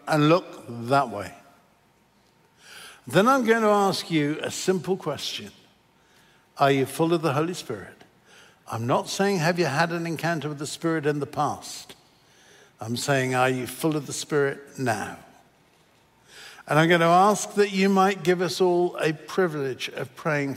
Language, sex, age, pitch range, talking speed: English, male, 60-79, 150-190 Hz, 170 wpm